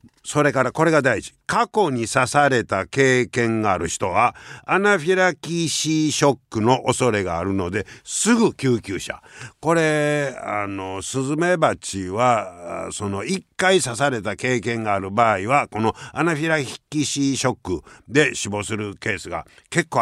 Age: 60-79